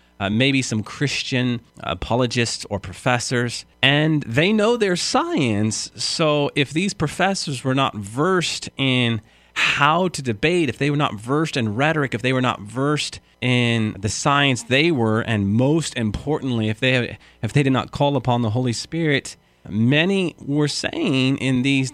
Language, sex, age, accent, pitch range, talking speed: English, male, 30-49, American, 105-145 Hz, 160 wpm